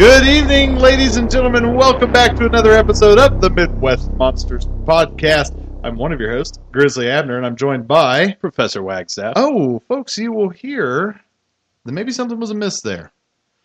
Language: English